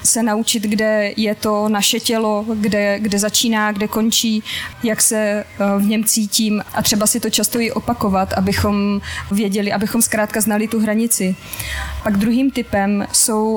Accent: native